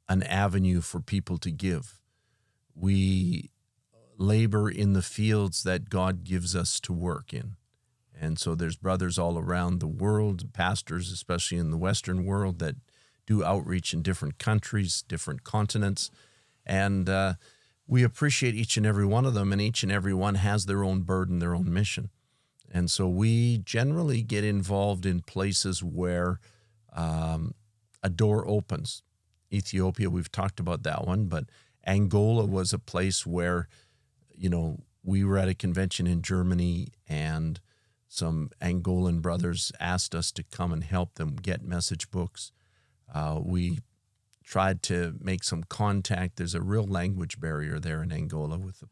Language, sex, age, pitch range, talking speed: English, male, 50-69, 90-105 Hz, 155 wpm